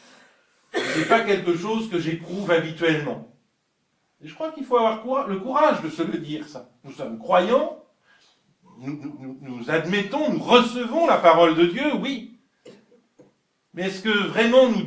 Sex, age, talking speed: male, 50-69, 160 wpm